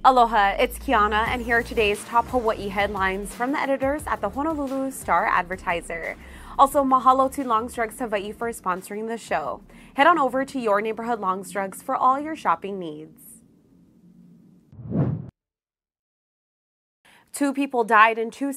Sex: female